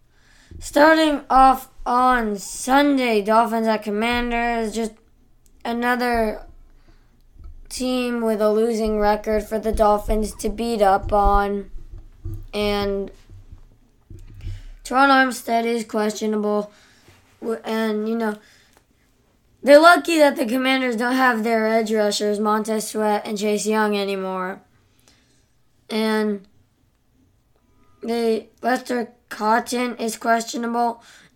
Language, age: English, 20-39